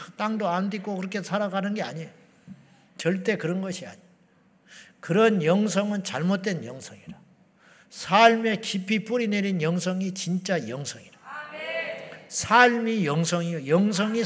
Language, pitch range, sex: Korean, 185-220 Hz, male